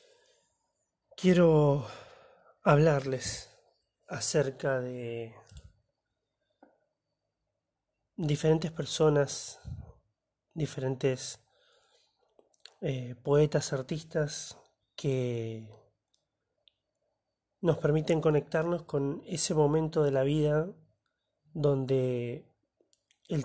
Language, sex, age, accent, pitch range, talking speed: Spanish, male, 30-49, Argentinian, 130-160 Hz, 55 wpm